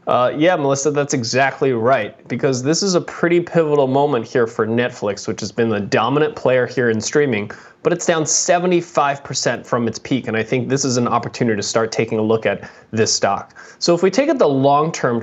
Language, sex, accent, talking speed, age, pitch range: English, male, American, 215 wpm, 20-39, 125-175 Hz